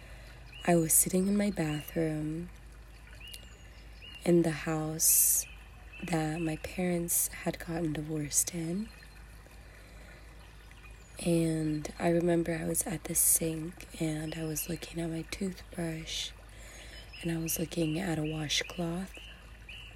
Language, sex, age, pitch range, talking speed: English, female, 20-39, 155-175 Hz, 115 wpm